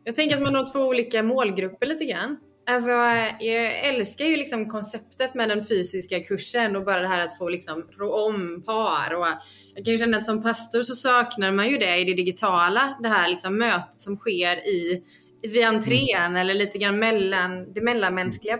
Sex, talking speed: female, 195 wpm